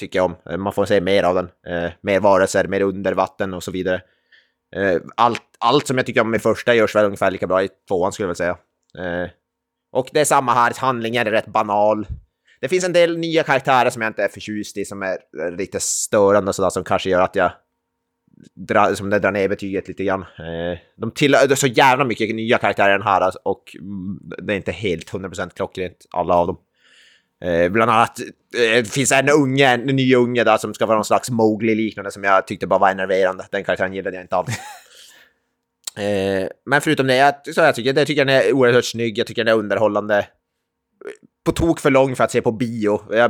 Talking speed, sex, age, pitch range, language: 215 wpm, male, 20-39, 95-125 Hz, Swedish